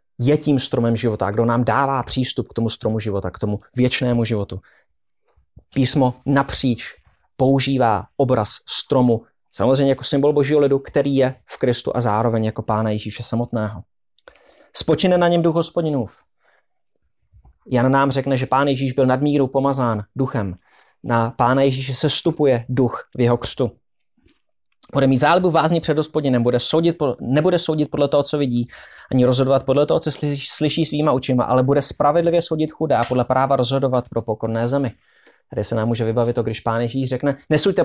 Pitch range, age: 115-145 Hz, 30-49